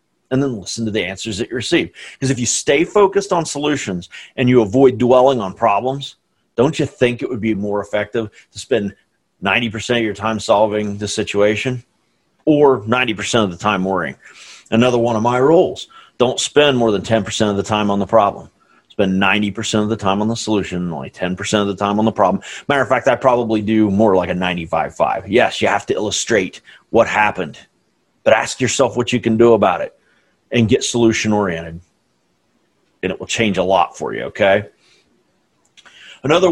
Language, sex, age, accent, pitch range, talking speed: English, male, 40-59, American, 105-135 Hz, 195 wpm